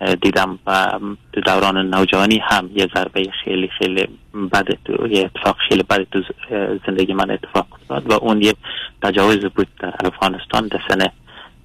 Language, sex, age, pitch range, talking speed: Persian, male, 30-49, 95-105 Hz, 150 wpm